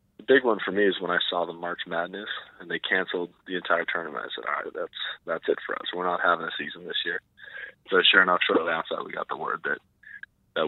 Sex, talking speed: male, 260 wpm